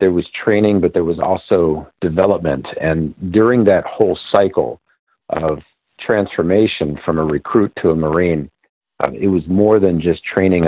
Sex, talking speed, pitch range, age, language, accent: male, 150 wpm, 80-95 Hz, 50-69, English, American